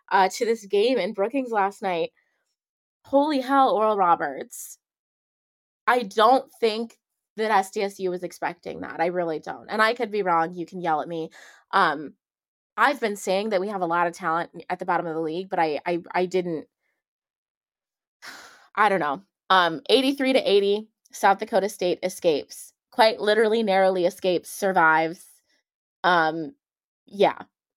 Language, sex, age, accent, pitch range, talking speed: English, female, 20-39, American, 175-215 Hz, 160 wpm